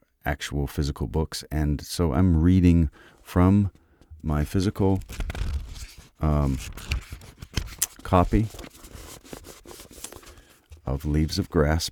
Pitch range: 70-80 Hz